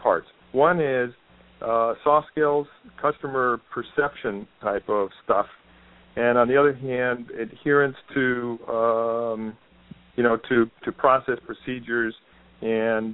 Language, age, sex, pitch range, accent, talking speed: English, 50-69, male, 110-135 Hz, American, 120 wpm